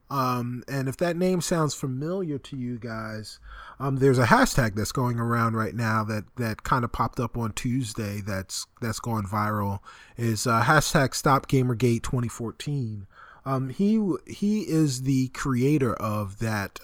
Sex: male